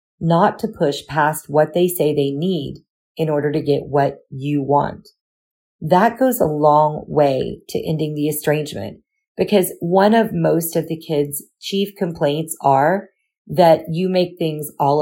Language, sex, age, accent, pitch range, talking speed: English, female, 40-59, American, 145-180 Hz, 160 wpm